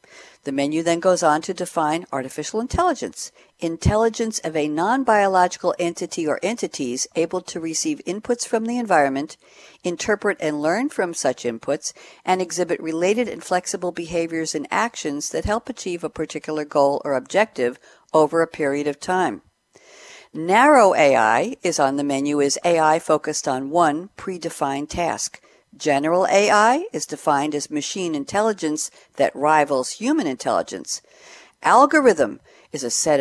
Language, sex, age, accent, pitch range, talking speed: English, female, 60-79, American, 150-210 Hz, 140 wpm